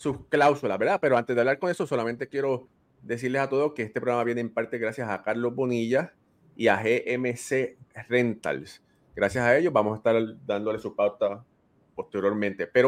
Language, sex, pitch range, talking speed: Spanish, male, 110-135 Hz, 180 wpm